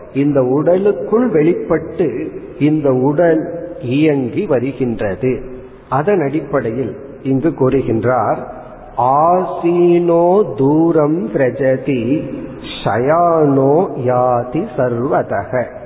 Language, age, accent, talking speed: Tamil, 40-59, native, 40 wpm